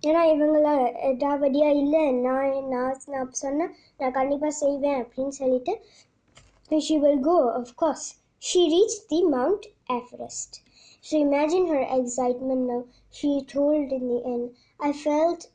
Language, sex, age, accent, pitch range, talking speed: Tamil, male, 20-39, native, 255-295 Hz, 145 wpm